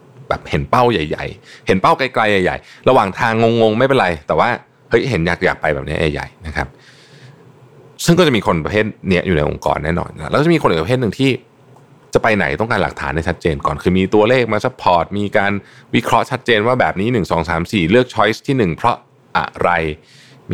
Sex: male